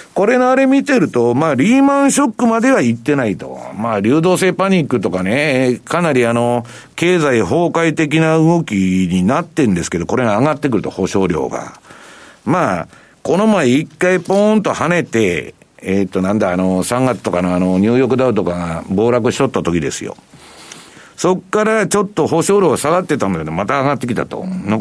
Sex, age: male, 60-79